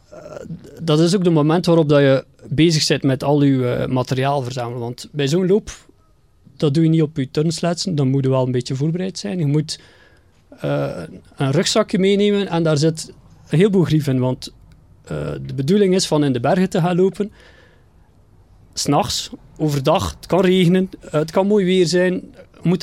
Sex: male